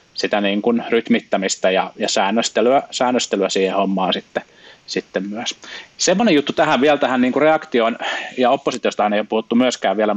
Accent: native